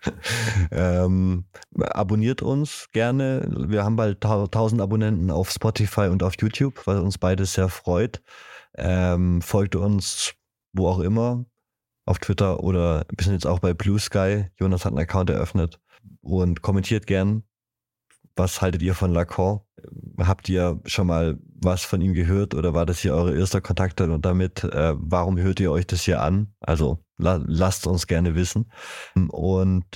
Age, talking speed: 20-39, 160 wpm